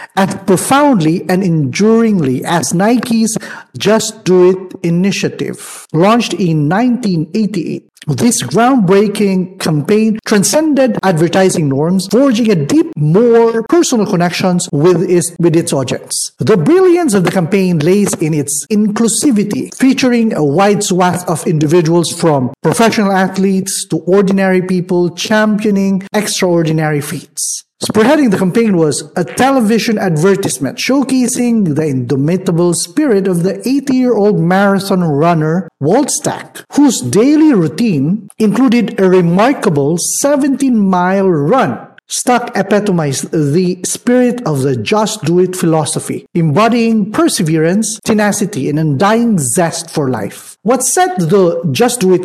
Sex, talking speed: male, 120 wpm